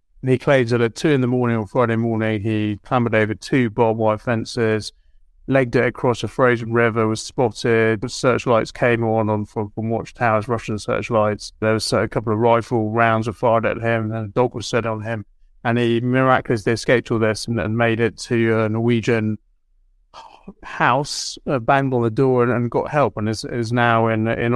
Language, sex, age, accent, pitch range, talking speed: English, male, 30-49, British, 110-130 Hz, 205 wpm